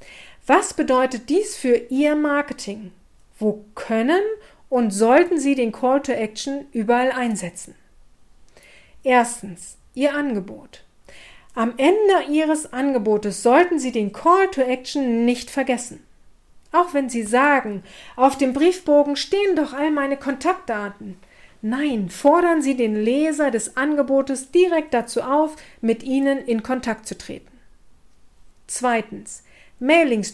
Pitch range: 235-300 Hz